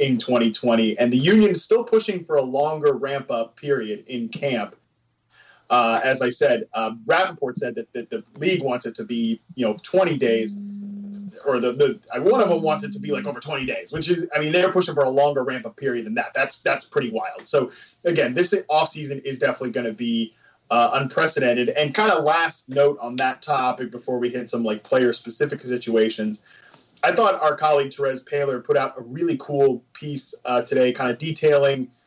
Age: 30-49